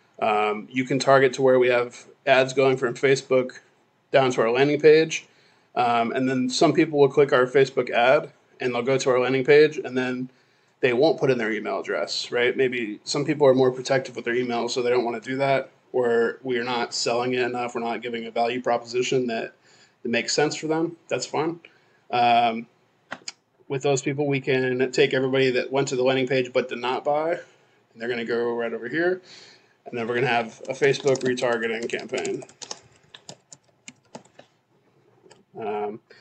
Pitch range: 120-135 Hz